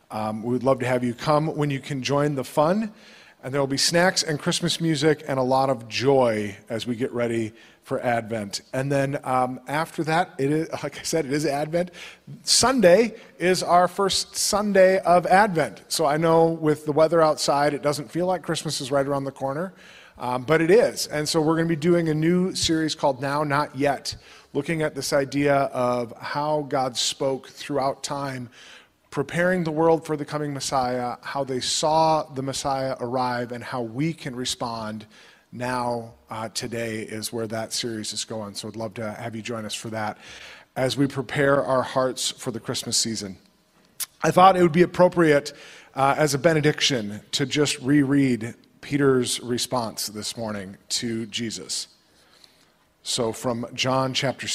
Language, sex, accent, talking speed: English, male, American, 180 wpm